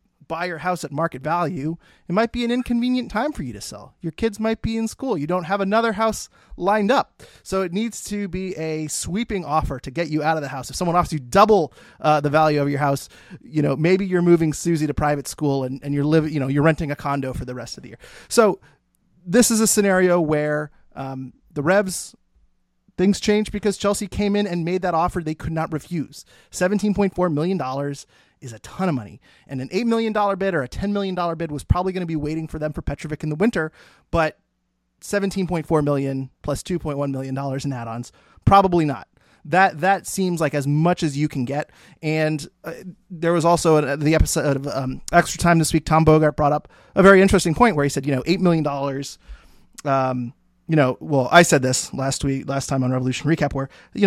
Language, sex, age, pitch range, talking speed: English, male, 30-49, 140-185 Hz, 230 wpm